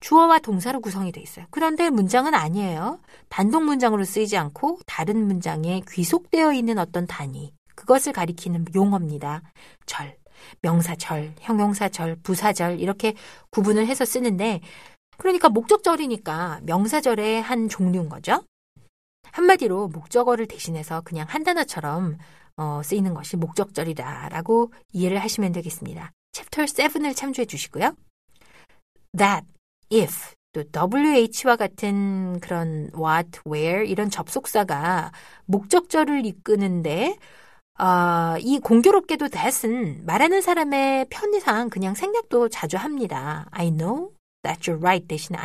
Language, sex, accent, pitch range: Korean, female, native, 170-245 Hz